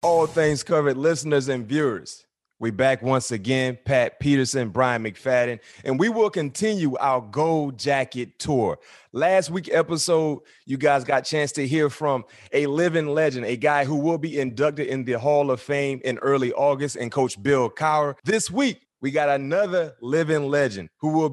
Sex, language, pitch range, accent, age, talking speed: male, English, 140-180 Hz, American, 30-49, 175 wpm